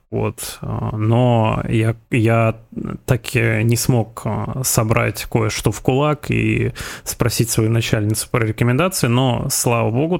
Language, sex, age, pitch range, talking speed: Russian, male, 20-39, 110-125 Hz, 125 wpm